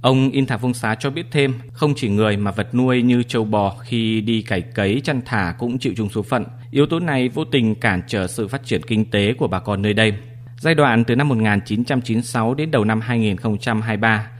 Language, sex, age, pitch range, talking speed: Vietnamese, male, 20-39, 110-130 Hz, 220 wpm